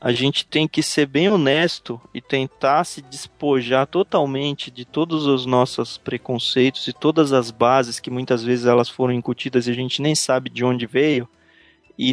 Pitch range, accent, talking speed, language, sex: 130-155 Hz, Brazilian, 180 wpm, Portuguese, male